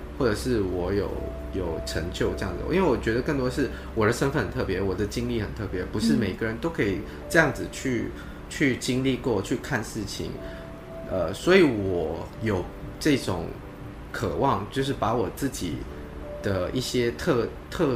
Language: Chinese